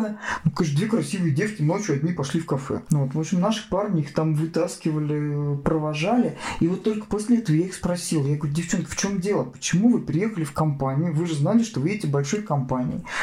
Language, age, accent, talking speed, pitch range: Russian, 40-59, native, 210 wpm, 160-220 Hz